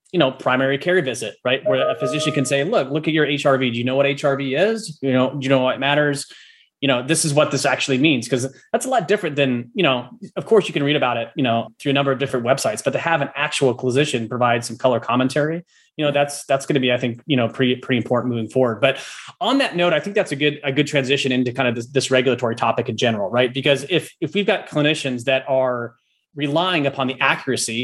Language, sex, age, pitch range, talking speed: English, male, 30-49, 130-150 Hz, 260 wpm